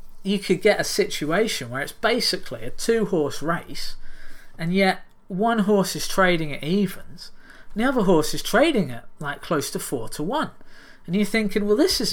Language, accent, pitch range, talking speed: English, British, 155-220 Hz, 190 wpm